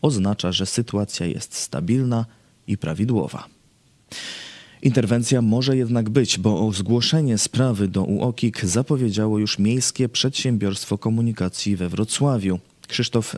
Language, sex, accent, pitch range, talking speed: Polish, male, native, 100-120 Hz, 110 wpm